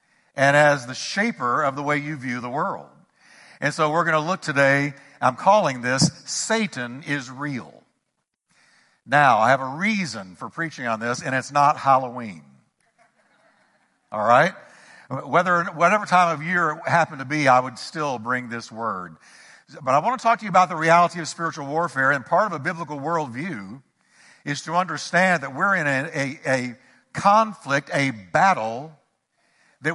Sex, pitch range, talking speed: male, 140-180 Hz, 170 wpm